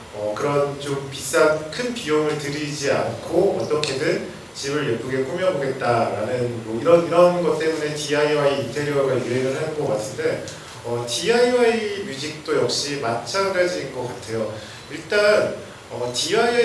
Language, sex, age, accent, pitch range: Korean, male, 40-59, native, 130-190 Hz